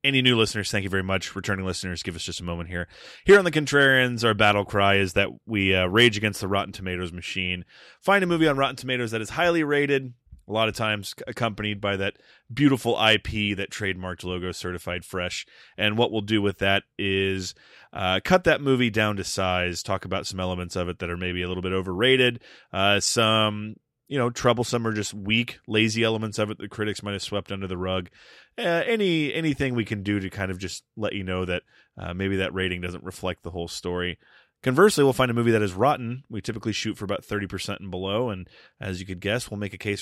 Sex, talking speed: male, 230 wpm